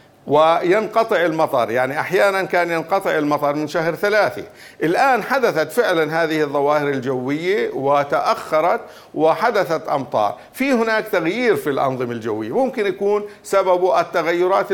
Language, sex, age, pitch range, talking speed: Arabic, male, 50-69, 145-185 Hz, 120 wpm